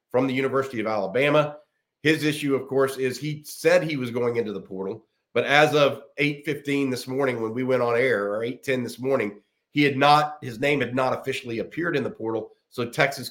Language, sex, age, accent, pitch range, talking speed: English, male, 40-59, American, 115-135 Hz, 210 wpm